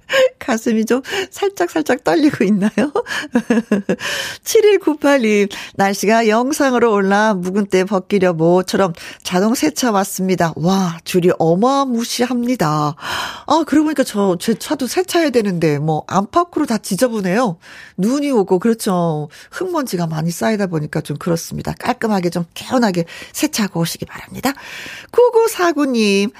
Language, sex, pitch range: Korean, female, 175-255 Hz